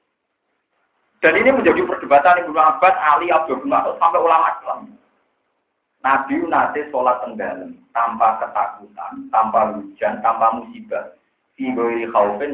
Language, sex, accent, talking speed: Indonesian, male, native, 125 wpm